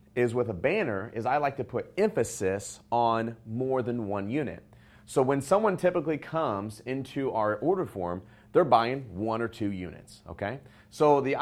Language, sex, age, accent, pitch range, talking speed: English, male, 30-49, American, 100-135 Hz, 175 wpm